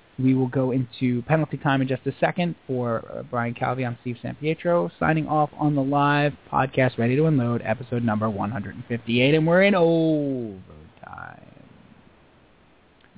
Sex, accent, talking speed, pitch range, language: male, American, 155 wpm, 125-175 Hz, English